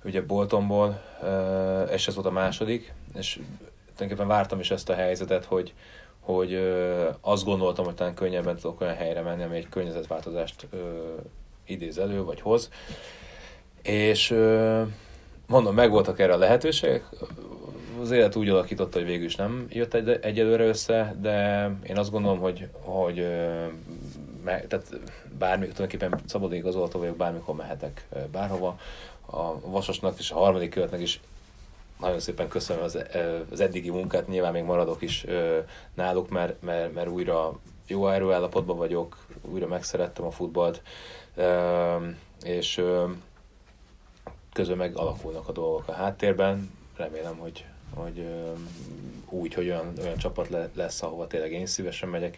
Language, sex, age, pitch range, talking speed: Hungarian, male, 30-49, 85-100 Hz, 130 wpm